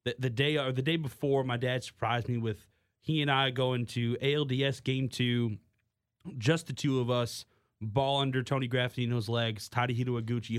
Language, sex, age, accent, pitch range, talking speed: English, male, 30-49, American, 105-135 Hz, 180 wpm